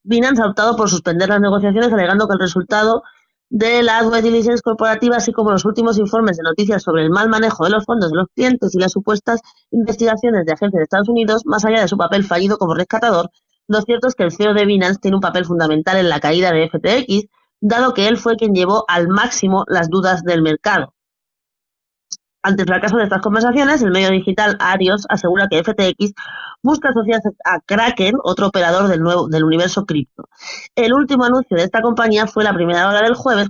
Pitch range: 185-230 Hz